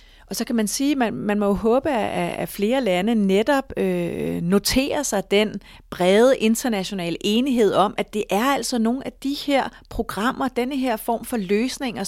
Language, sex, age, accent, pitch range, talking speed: Danish, female, 30-49, native, 180-230 Hz, 185 wpm